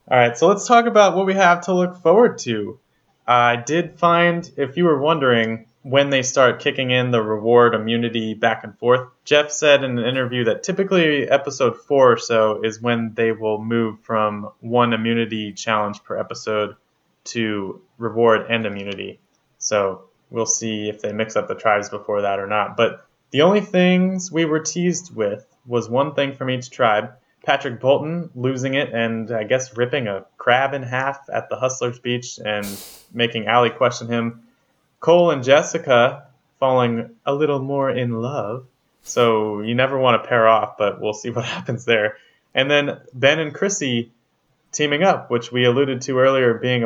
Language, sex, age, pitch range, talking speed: English, male, 20-39, 115-150 Hz, 180 wpm